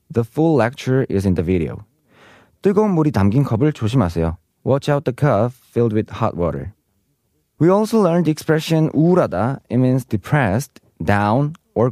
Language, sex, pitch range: Korean, male, 100-155 Hz